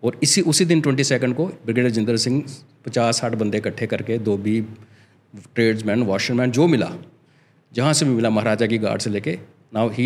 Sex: male